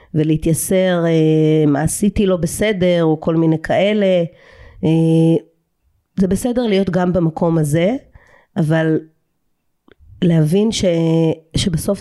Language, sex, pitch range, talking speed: Hebrew, female, 160-190 Hz, 95 wpm